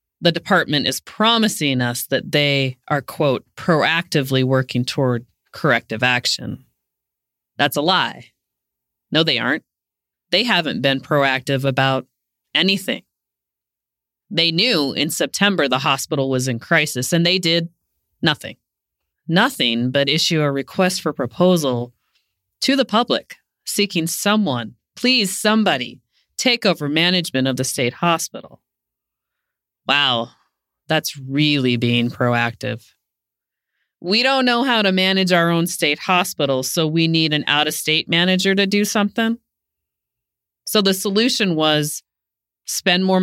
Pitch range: 135-205 Hz